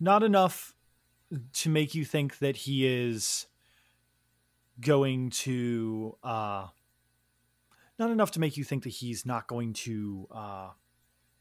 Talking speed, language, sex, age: 125 wpm, English, male, 20-39